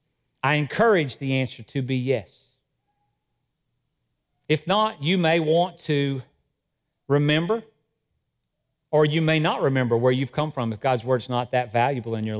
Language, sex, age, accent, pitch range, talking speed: English, male, 40-59, American, 135-220 Hz, 150 wpm